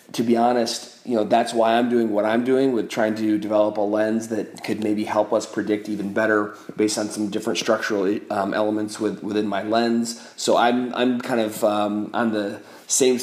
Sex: male